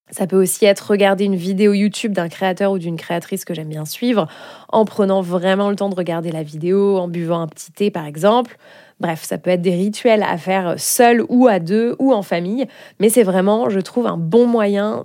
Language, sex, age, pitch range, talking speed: French, female, 20-39, 180-215 Hz, 225 wpm